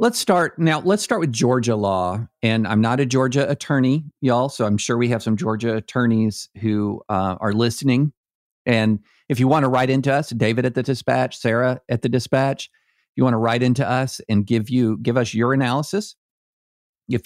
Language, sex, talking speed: English, male, 200 wpm